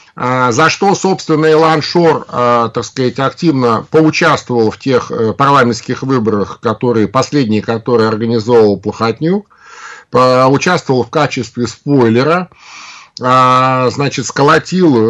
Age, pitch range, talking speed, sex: 50-69, 115-155 Hz, 95 wpm, male